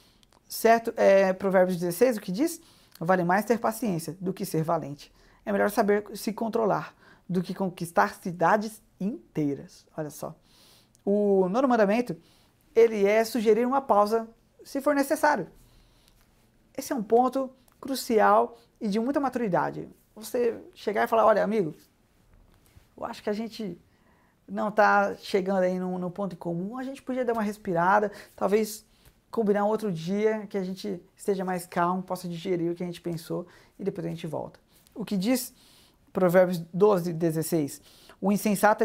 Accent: Brazilian